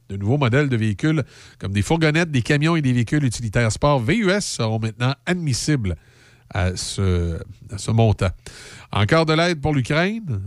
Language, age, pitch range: French, 50-69, 115-165 Hz